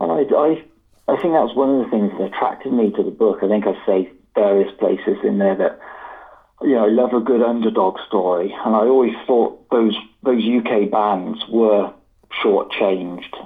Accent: British